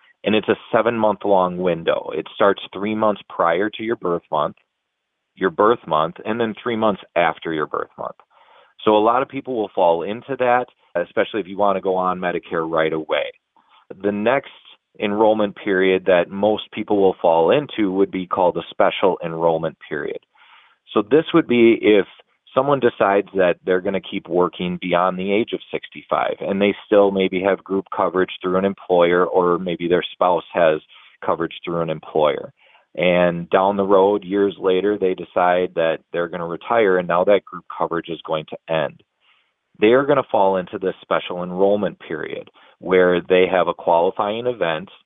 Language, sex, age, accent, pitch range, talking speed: English, male, 30-49, American, 90-105 Hz, 180 wpm